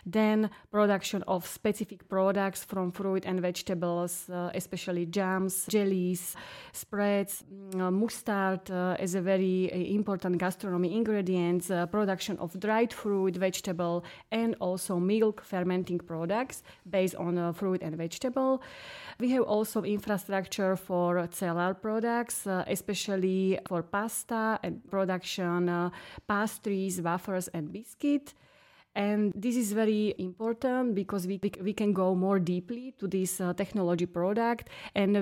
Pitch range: 180-210 Hz